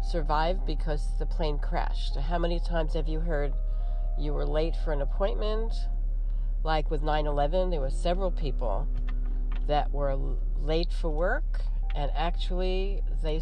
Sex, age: female, 50-69